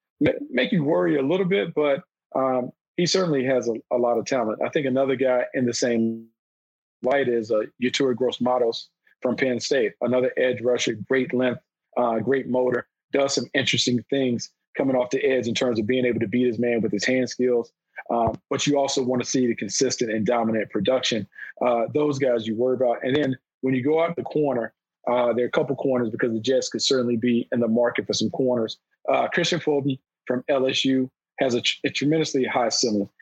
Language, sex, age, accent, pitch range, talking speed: English, male, 40-59, American, 120-135 Hz, 210 wpm